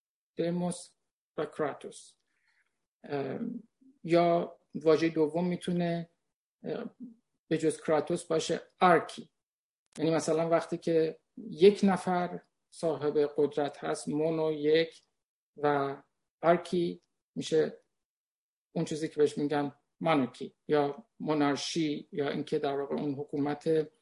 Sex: male